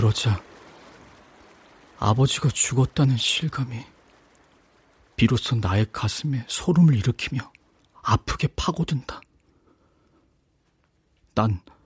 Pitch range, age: 110-135 Hz, 40-59